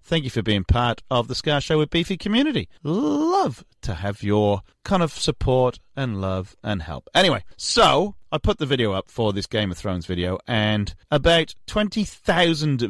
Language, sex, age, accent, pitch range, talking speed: English, male, 30-49, British, 105-175 Hz, 185 wpm